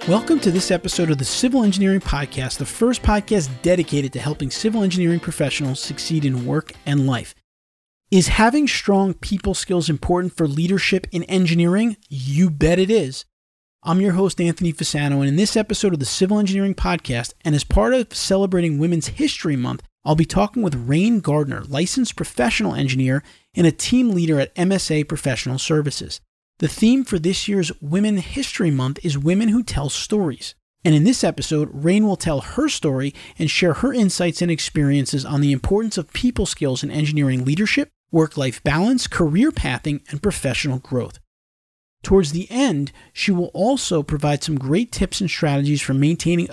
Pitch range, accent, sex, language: 140-195 Hz, American, male, English